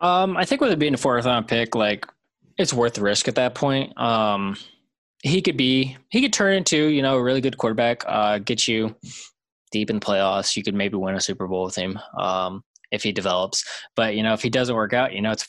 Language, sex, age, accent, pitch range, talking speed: English, male, 20-39, American, 100-125 Hz, 250 wpm